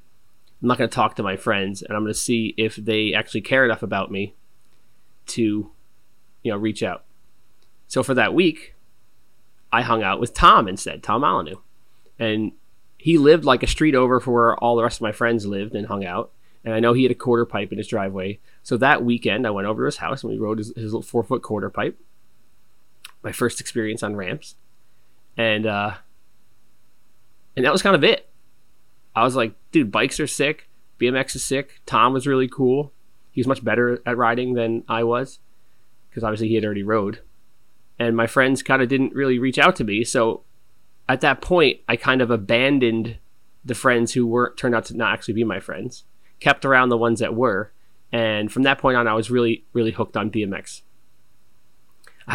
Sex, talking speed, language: male, 205 wpm, English